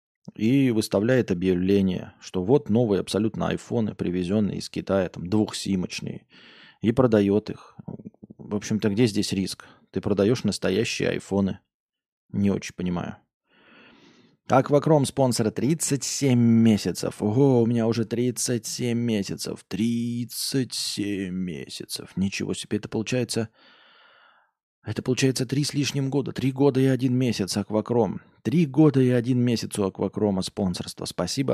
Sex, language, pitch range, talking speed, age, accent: male, Russian, 100-130 Hz, 125 wpm, 20-39, native